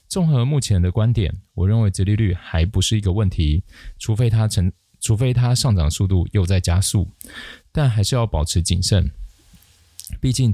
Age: 20-39